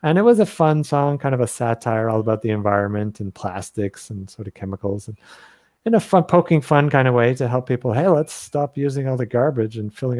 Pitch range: 105-130 Hz